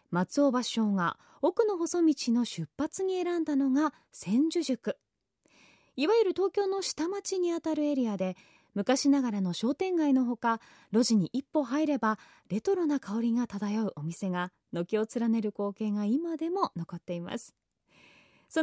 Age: 20-39